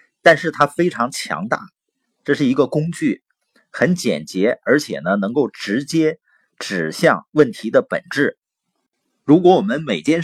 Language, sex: Chinese, male